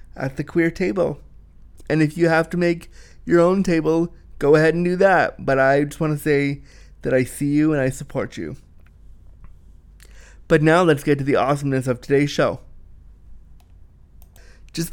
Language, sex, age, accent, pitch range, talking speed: English, male, 20-39, American, 130-155 Hz, 175 wpm